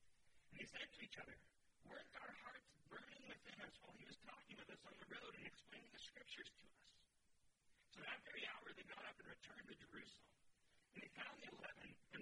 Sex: male